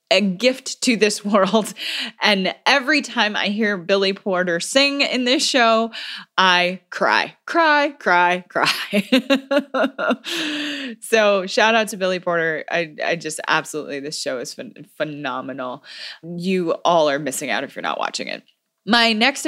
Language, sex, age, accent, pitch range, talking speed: English, female, 20-39, American, 170-220 Hz, 145 wpm